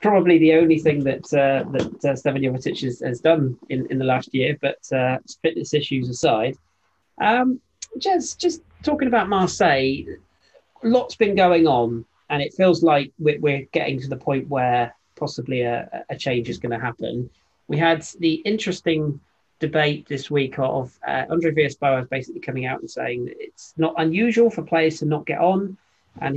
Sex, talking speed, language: male, 175 wpm, English